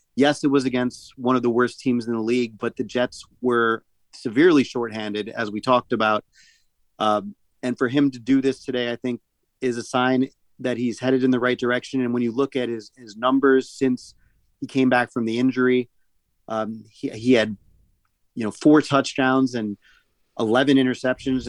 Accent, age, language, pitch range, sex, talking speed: American, 30-49, English, 115-135 Hz, male, 190 wpm